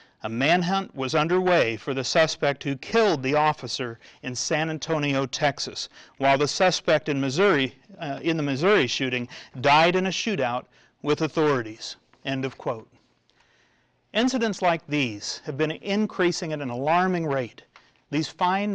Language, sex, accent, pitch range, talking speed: English, male, American, 135-175 Hz, 145 wpm